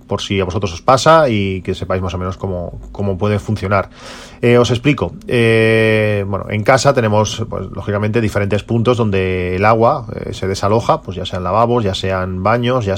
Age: 30-49